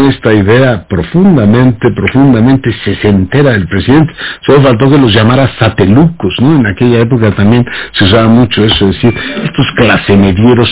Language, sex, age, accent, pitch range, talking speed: Spanish, male, 60-79, Mexican, 105-135 Hz, 155 wpm